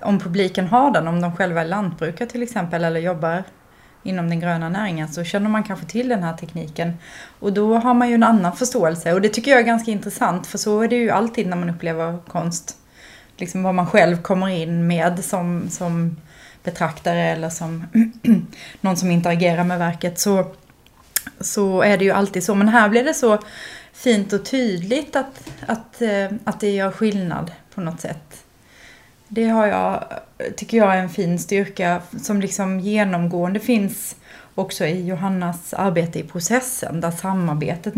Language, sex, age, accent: English, female, 30-49, Swedish